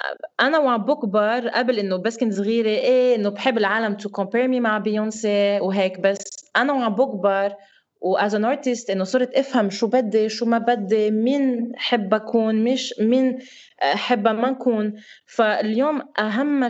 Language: Arabic